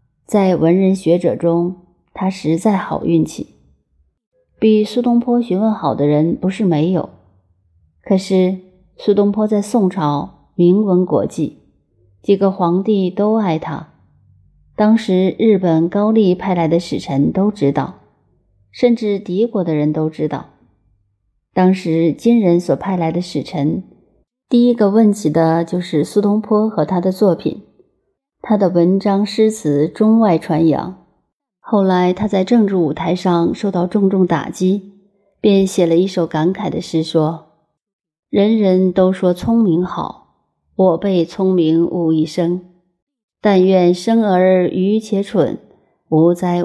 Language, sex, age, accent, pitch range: Chinese, female, 30-49, native, 160-205 Hz